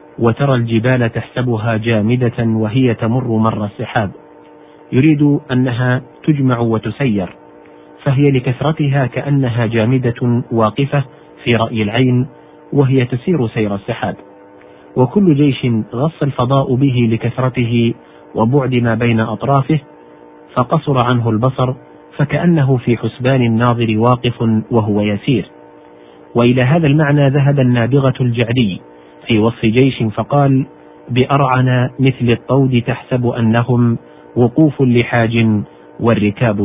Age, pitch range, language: 40-59, 110-135 Hz, Arabic